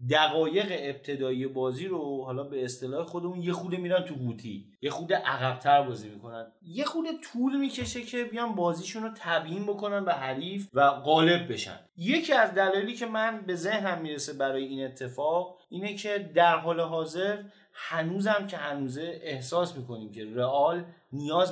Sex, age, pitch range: male, 30-49, 140-195 Hz